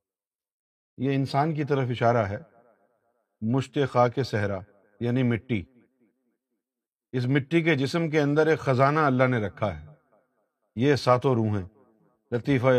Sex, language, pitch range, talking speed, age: male, Urdu, 120-155 Hz, 125 wpm, 50-69